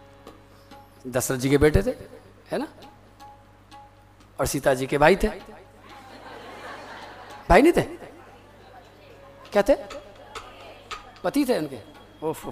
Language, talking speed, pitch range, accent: Hindi, 105 wpm, 140-235 Hz, native